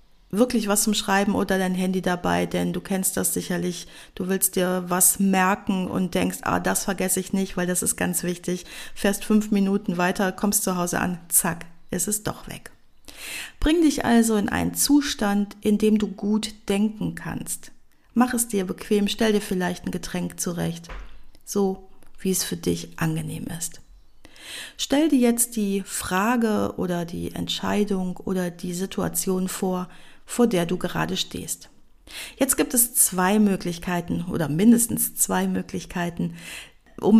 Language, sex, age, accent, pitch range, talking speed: German, female, 50-69, German, 175-215 Hz, 160 wpm